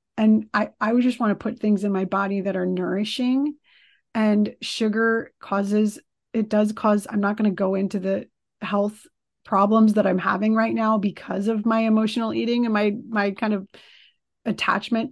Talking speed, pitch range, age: 185 wpm, 205-235 Hz, 30-49